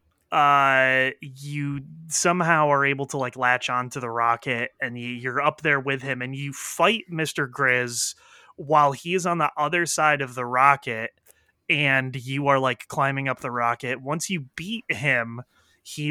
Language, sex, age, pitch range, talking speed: English, male, 20-39, 125-155 Hz, 170 wpm